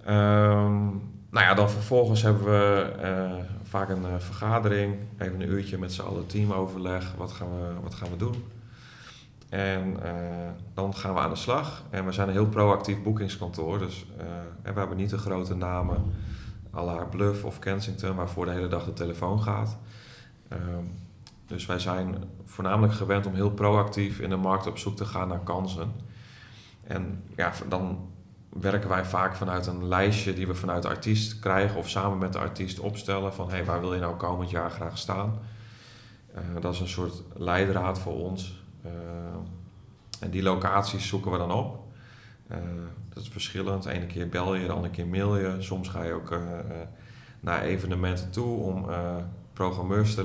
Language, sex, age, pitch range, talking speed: Dutch, male, 30-49, 90-105 Hz, 180 wpm